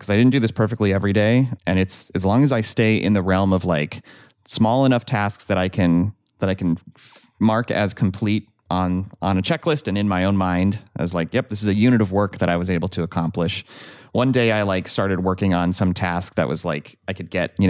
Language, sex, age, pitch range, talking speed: English, male, 30-49, 90-110 Hz, 245 wpm